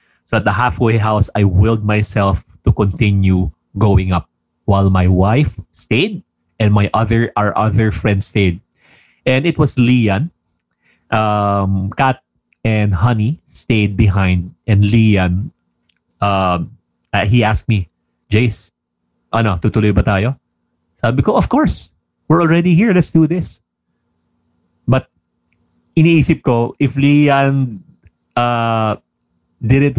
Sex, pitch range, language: male, 95-125 Hz, English